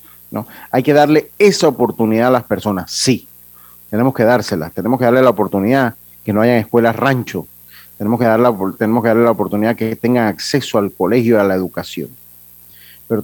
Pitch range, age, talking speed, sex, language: 95-140 Hz, 40-59, 170 wpm, male, Spanish